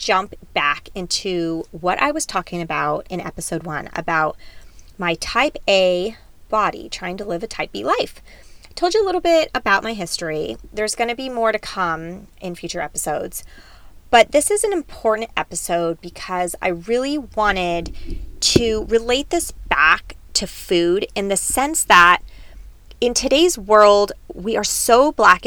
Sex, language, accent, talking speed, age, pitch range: female, English, American, 160 wpm, 20-39, 170-240 Hz